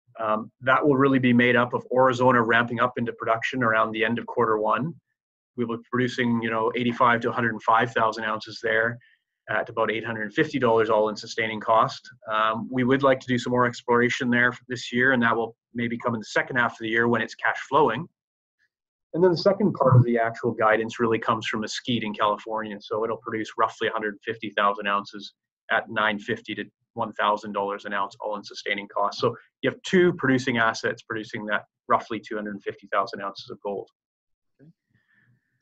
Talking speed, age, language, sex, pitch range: 210 wpm, 30-49, English, male, 115-130 Hz